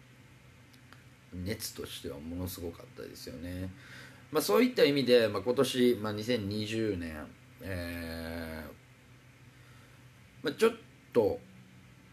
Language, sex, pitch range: Japanese, male, 95-125 Hz